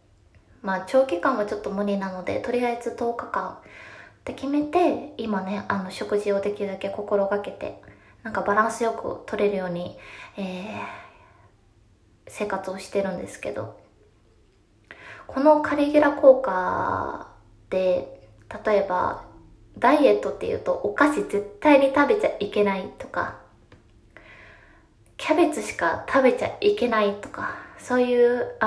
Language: Japanese